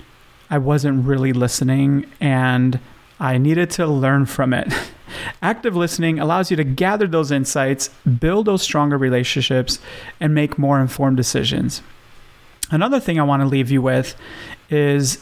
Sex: male